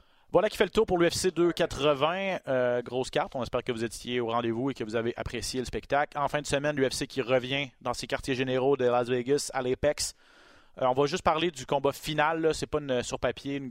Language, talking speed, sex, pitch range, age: French, 245 wpm, male, 125-145 Hz, 30-49